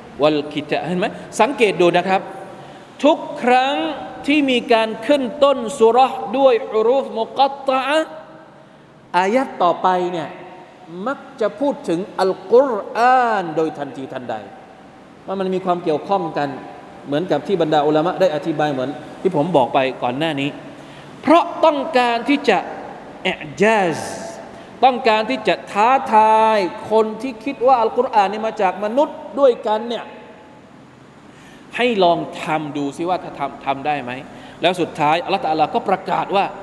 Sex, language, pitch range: male, Thai, 160-240 Hz